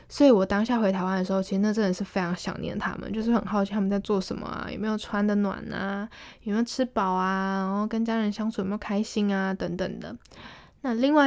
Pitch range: 195-225 Hz